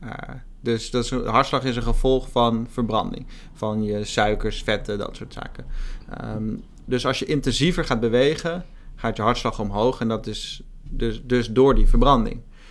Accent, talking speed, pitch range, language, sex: Dutch, 155 wpm, 110-130 Hz, Dutch, male